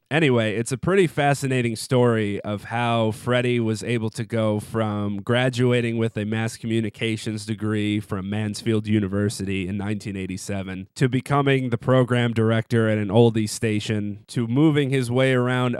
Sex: male